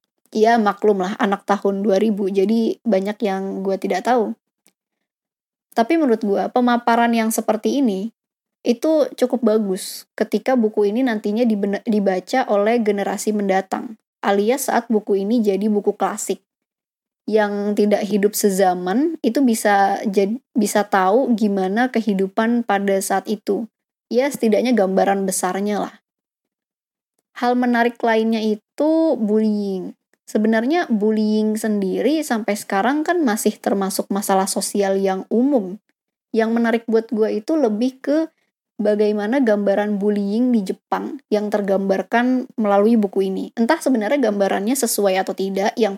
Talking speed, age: 130 wpm, 20-39